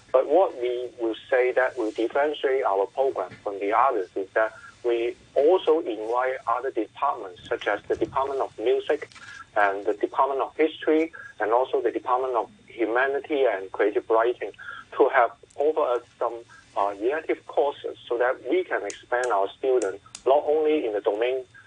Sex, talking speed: male, 165 wpm